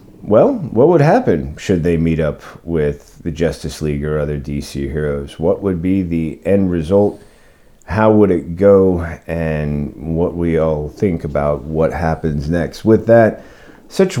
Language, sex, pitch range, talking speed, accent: English, male, 80-100 Hz, 160 wpm, American